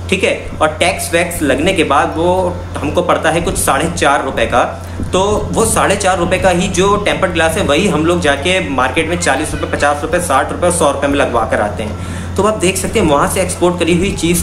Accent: native